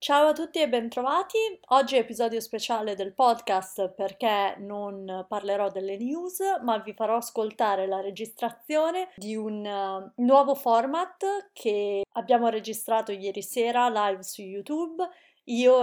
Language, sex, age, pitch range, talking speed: Italian, female, 30-49, 200-255 Hz, 135 wpm